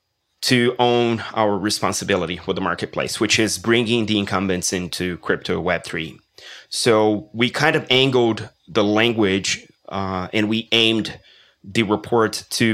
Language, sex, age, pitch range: English, male, 30-49, 100-115 Hz